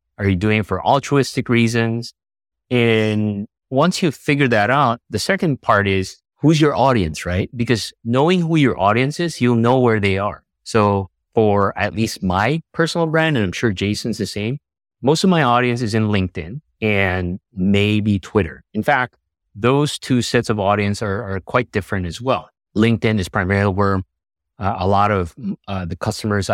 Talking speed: 180 wpm